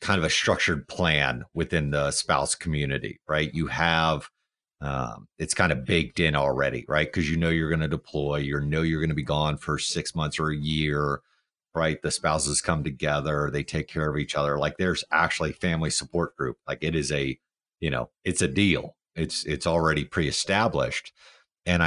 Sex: male